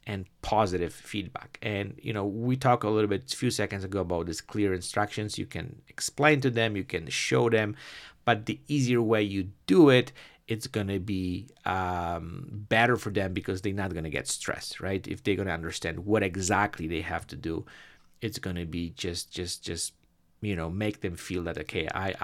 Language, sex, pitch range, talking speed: English, male, 90-115 Hz, 210 wpm